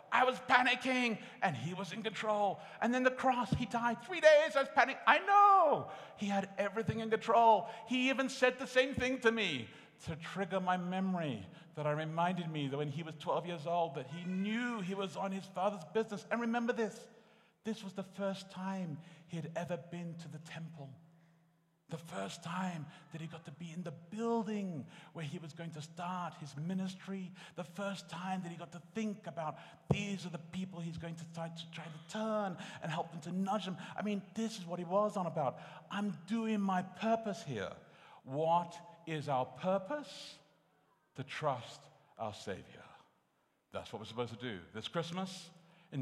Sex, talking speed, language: male, 195 wpm, English